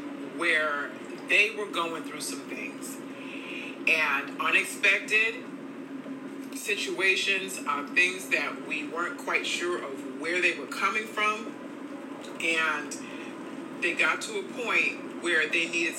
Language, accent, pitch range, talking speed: English, American, 285-310 Hz, 120 wpm